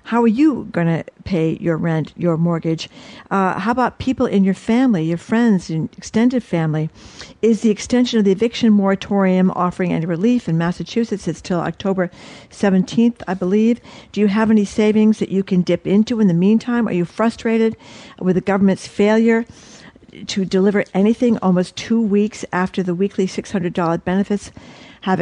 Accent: American